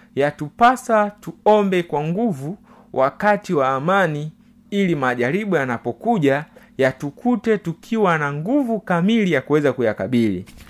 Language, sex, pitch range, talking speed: Swahili, male, 145-220 Hz, 100 wpm